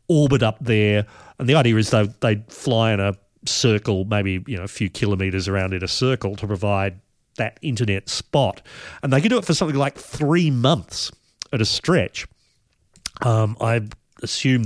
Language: English